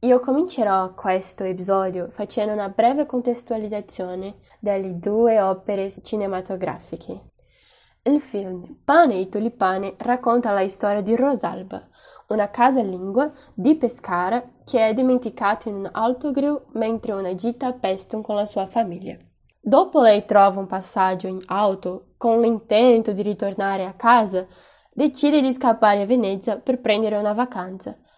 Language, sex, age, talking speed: Italian, female, 10-29, 135 wpm